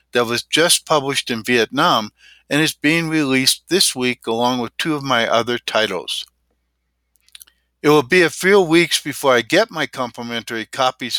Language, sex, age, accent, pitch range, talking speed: English, male, 60-79, American, 110-150 Hz, 165 wpm